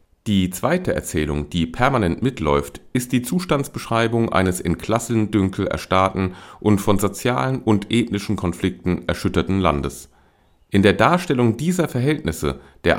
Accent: German